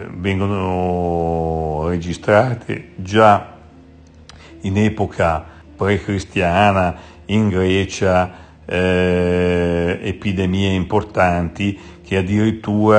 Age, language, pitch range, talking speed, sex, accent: 60-79, Italian, 85-100 Hz, 60 wpm, male, native